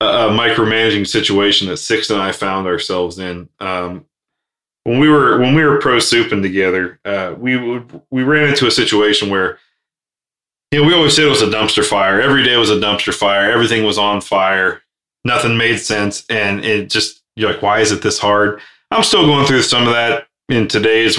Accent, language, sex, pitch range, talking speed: American, English, male, 100-125 Hz, 200 wpm